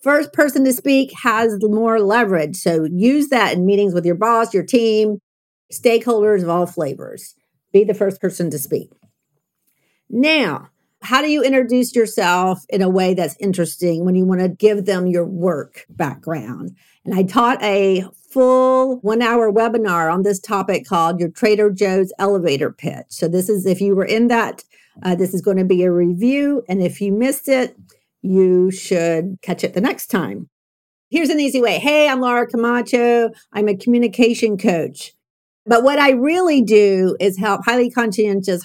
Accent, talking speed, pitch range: American, 170 wpm, 185-240 Hz